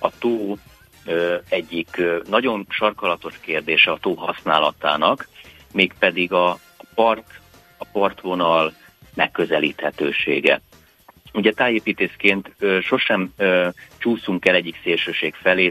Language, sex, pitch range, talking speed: Hungarian, male, 85-100 Hz, 90 wpm